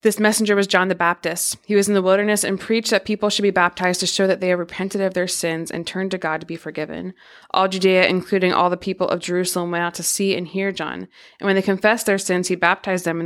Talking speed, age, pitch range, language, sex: 265 wpm, 20-39, 170-195 Hz, English, female